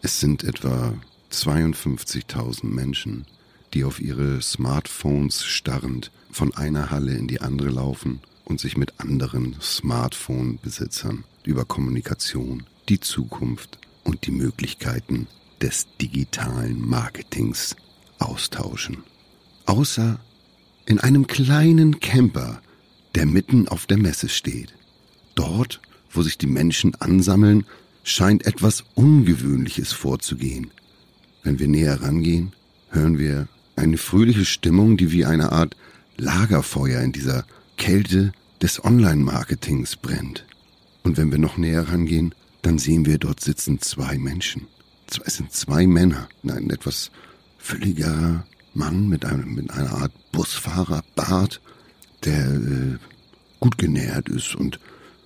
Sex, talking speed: male, 115 wpm